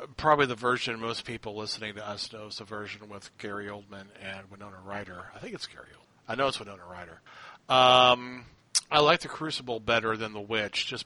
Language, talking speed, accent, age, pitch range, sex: English, 200 wpm, American, 40-59, 110-130 Hz, male